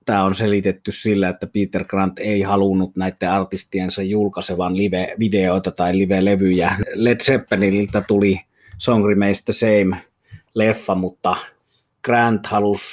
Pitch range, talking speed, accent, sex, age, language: 95-110 Hz, 120 wpm, native, male, 30-49, Finnish